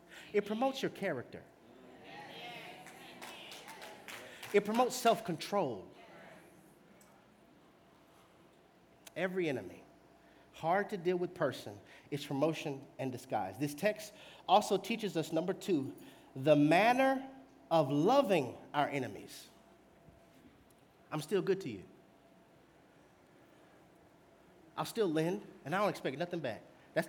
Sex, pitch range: male, 160-220 Hz